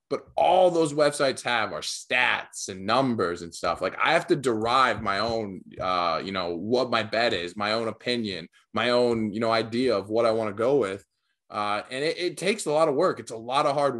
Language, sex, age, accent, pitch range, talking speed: English, male, 20-39, American, 110-150 Hz, 230 wpm